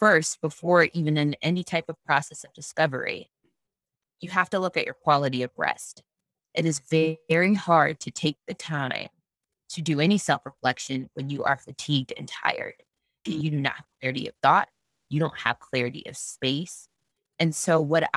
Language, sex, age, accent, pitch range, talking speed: English, female, 20-39, American, 140-170 Hz, 175 wpm